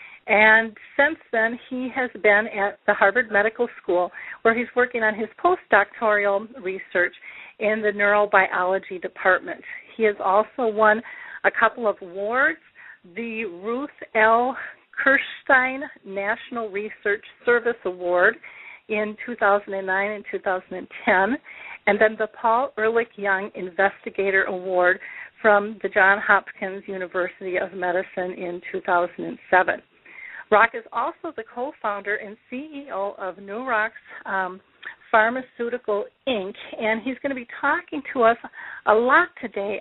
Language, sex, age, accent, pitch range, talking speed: English, female, 50-69, American, 195-235 Hz, 120 wpm